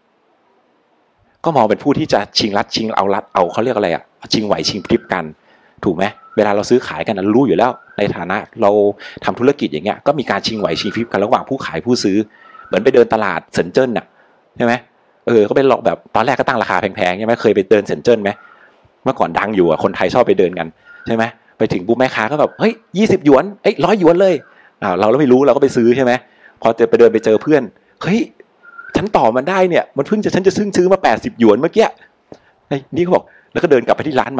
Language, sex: Thai, male